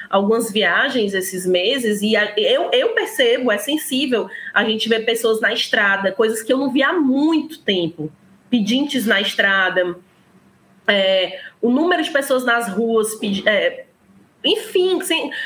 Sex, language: female, Hungarian